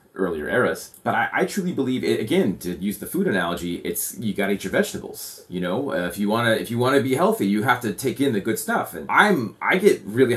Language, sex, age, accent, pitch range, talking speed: English, male, 30-49, American, 90-110 Hz, 270 wpm